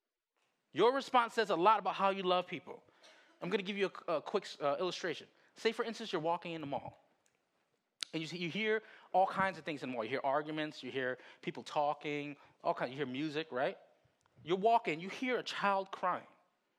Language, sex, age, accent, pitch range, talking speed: English, male, 20-39, American, 150-215 Hz, 210 wpm